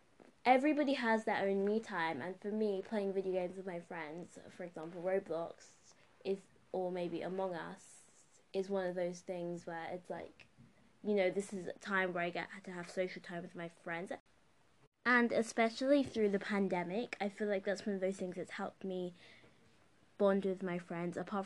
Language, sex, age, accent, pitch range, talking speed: English, female, 20-39, British, 175-205 Hz, 190 wpm